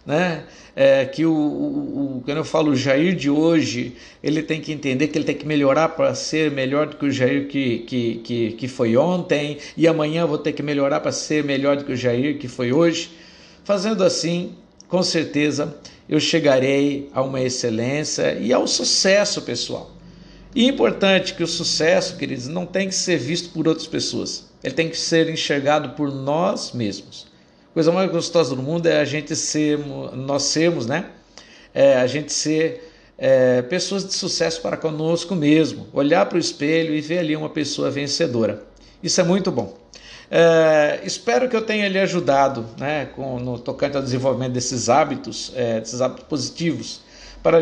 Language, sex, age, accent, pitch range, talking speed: Portuguese, male, 50-69, Brazilian, 135-170 Hz, 180 wpm